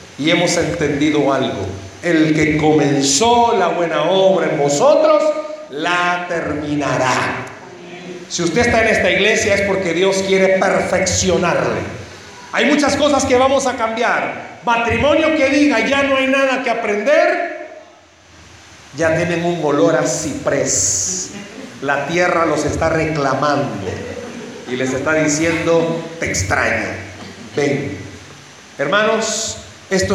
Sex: male